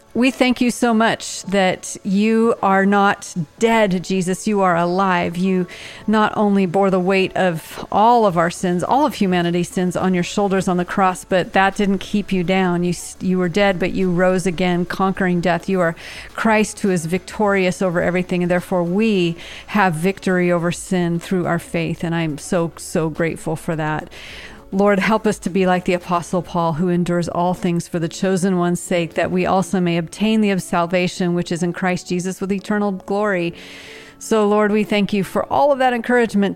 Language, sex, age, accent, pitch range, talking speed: English, female, 40-59, American, 175-195 Hz, 195 wpm